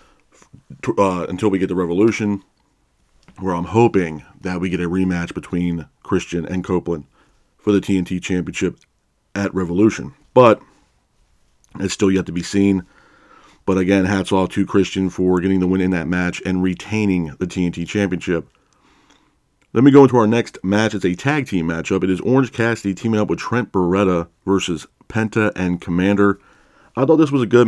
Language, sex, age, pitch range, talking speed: English, male, 40-59, 90-105 Hz, 175 wpm